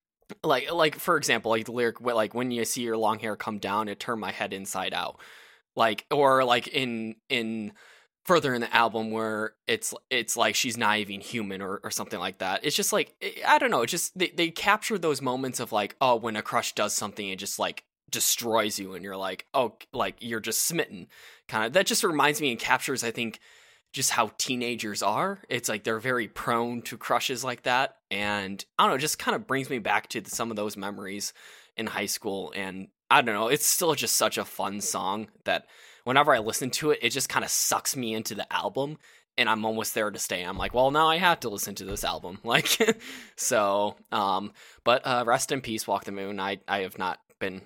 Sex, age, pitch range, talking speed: male, 10-29, 105-130 Hz, 225 wpm